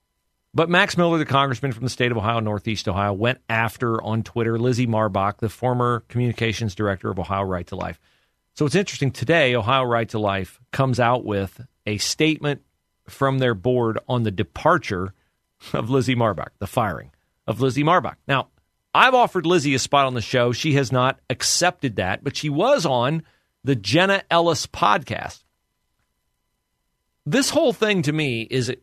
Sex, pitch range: male, 105-140 Hz